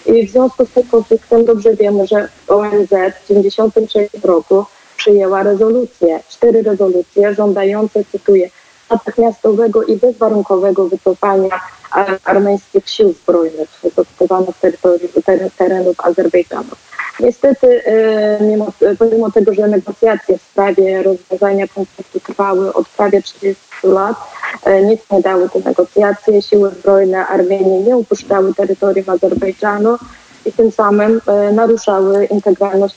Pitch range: 185-215 Hz